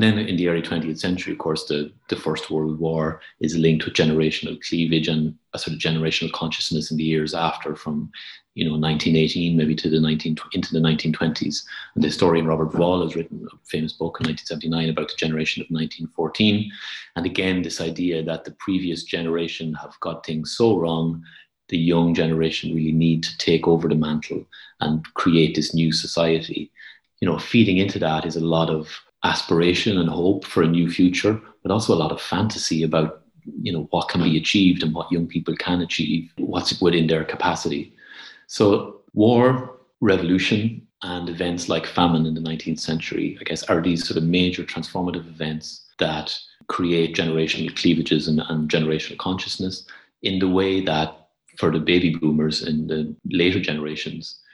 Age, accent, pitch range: 30-49, Irish, 80-90 Hz